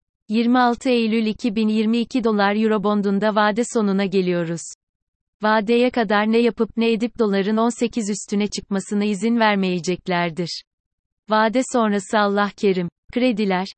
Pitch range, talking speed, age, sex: 190-225 Hz, 115 wpm, 30-49, female